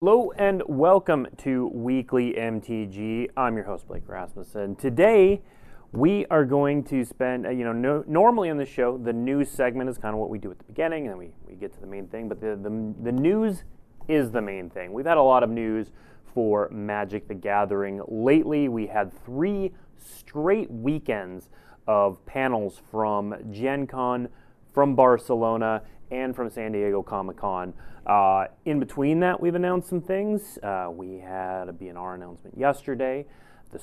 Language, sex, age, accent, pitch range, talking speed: English, male, 30-49, American, 110-145 Hz, 170 wpm